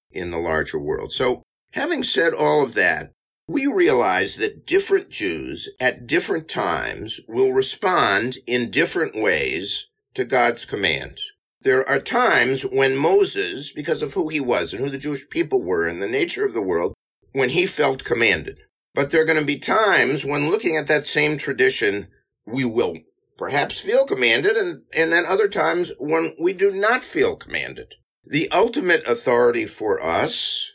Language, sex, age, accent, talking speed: English, male, 50-69, American, 165 wpm